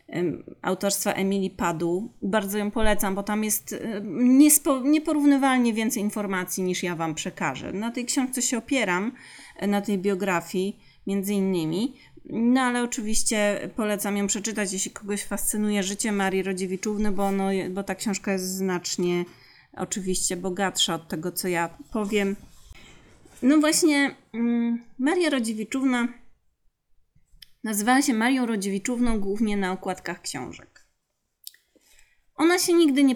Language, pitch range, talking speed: Polish, 190-240 Hz, 125 wpm